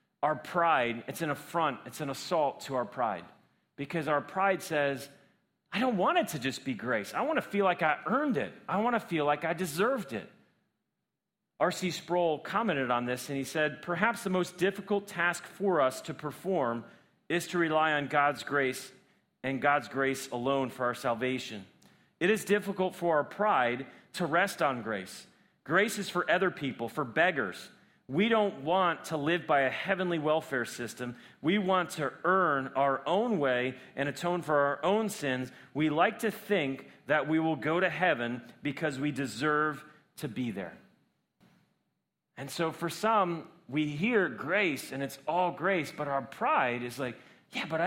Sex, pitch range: male, 135-185 Hz